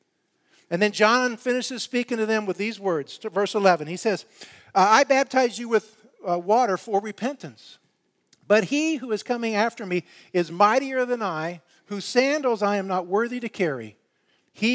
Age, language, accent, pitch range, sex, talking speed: 50-69, English, American, 160-220 Hz, male, 170 wpm